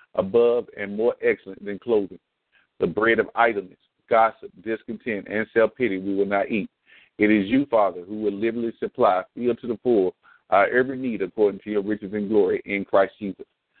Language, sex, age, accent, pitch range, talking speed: English, male, 50-69, American, 100-120 Hz, 185 wpm